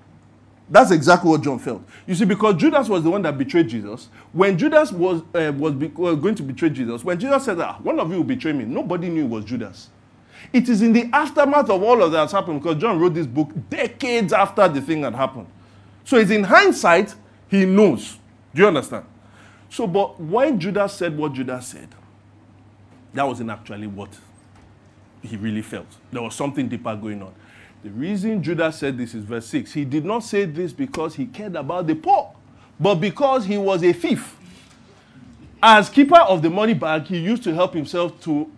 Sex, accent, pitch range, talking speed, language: male, Nigerian, 120-200 Hz, 200 wpm, English